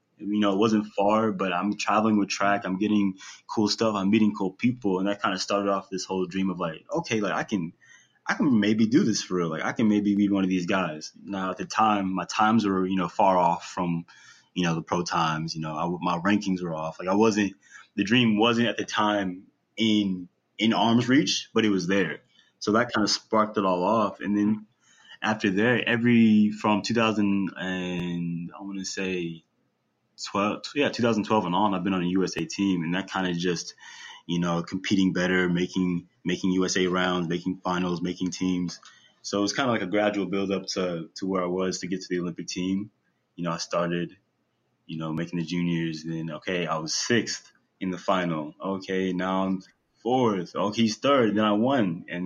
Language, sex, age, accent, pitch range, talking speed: English, male, 20-39, American, 90-105 Hz, 215 wpm